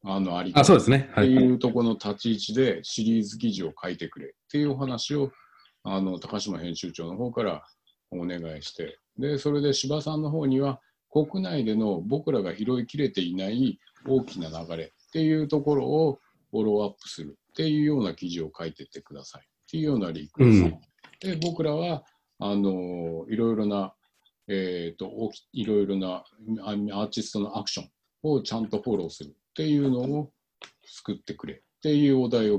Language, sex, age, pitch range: Japanese, male, 50-69, 95-140 Hz